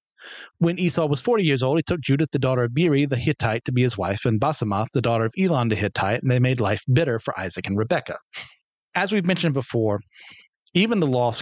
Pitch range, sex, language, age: 120-155 Hz, male, English, 40-59